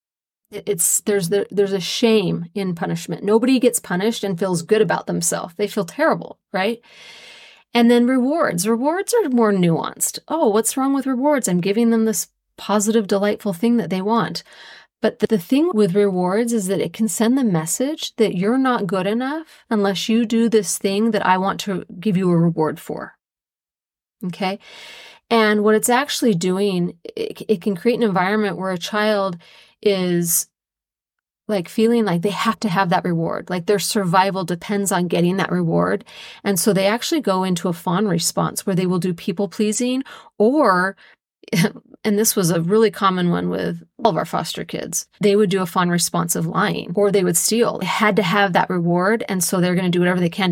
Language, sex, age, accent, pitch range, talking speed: English, female, 30-49, American, 180-220 Hz, 195 wpm